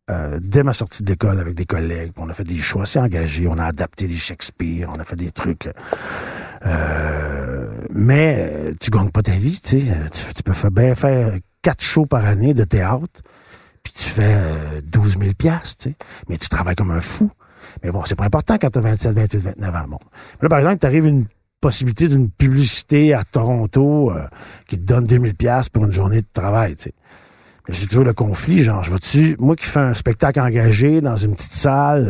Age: 50-69